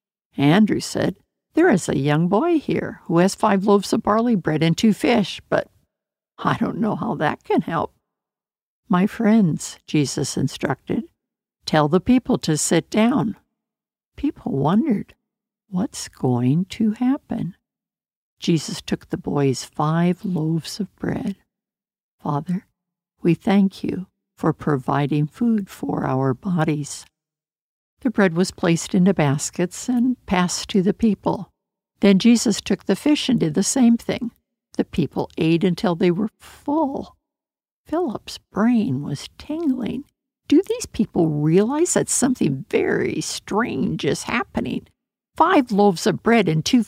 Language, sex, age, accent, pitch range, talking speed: English, female, 60-79, American, 165-225 Hz, 140 wpm